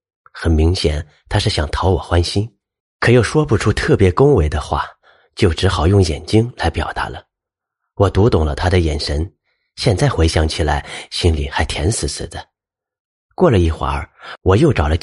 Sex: male